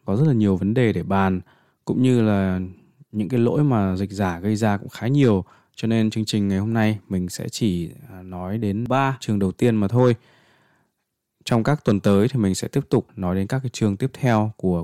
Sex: male